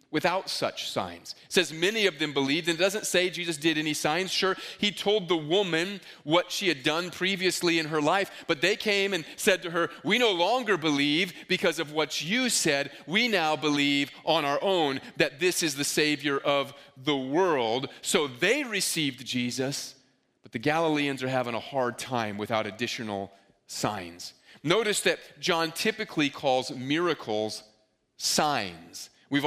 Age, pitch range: 30-49, 140-180 Hz